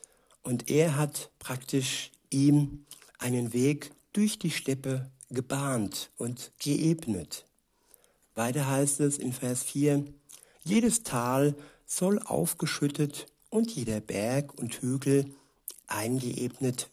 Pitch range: 125-150 Hz